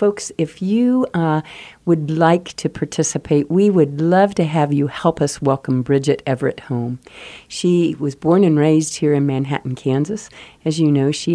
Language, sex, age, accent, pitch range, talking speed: English, female, 50-69, American, 140-170 Hz, 175 wpm